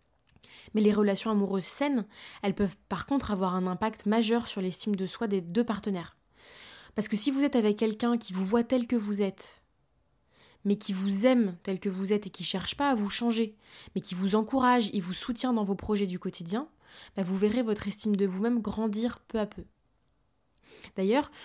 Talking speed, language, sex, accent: 205 wpm, French, female, French